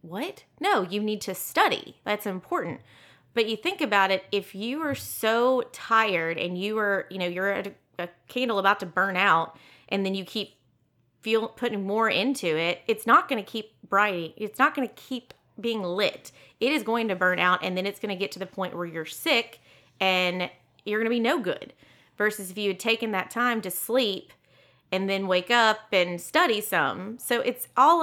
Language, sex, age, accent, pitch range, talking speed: English, female, 30-49, American, 175-220 Hz, 210 wpm